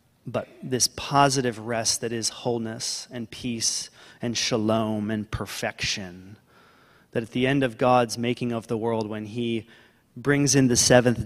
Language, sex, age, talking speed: English, male, 30-49, 155 wpm